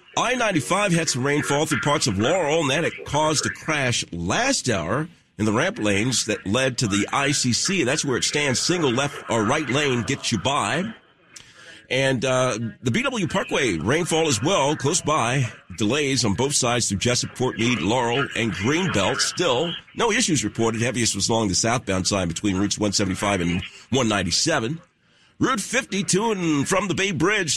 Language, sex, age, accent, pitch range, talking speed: English, male, 50-69, American, 105-155 Hz, 170 wpm